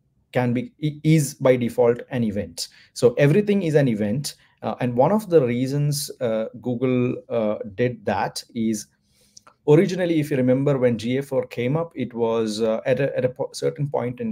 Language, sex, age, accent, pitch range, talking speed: English, male, 30-49, Indian, 110-140 Hz, 175 wpm